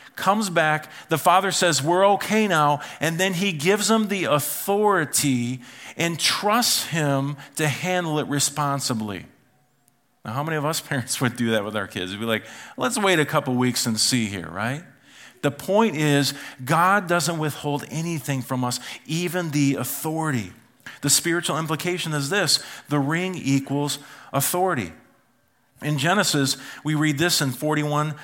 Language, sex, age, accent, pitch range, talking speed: English, male, 40-59, American, 125-165 Hz, 155 wpm